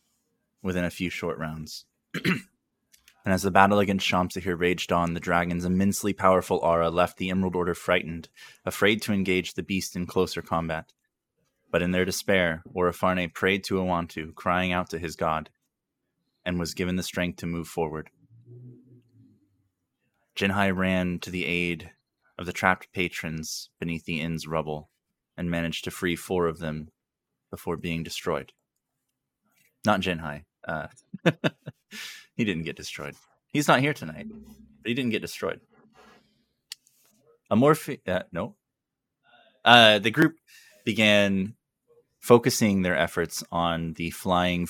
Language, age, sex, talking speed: English, 20-39, male, 140 wpm